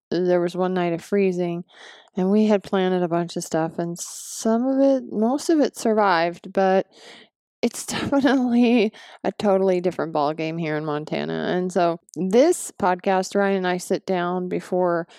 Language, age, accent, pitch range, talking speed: English, 20-39, American, 170-205 Hz, 170 wpm